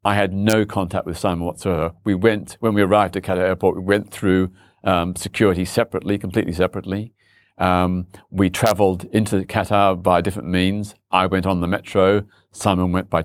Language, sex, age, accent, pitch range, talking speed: English, male, 40-59, British, 90-105 Hz, 175 wpm